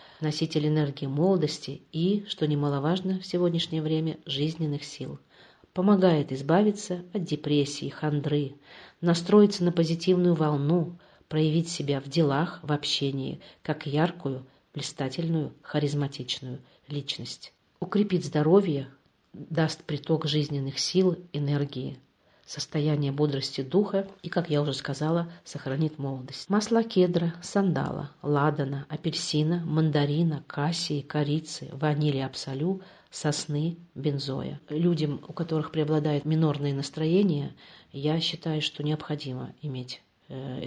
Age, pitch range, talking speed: 40-59, 140-165 Hz, 105 wpm